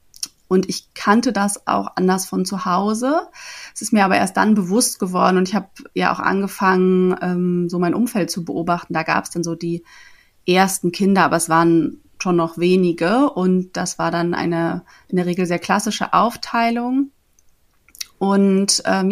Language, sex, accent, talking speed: German, female, German, 175 wpm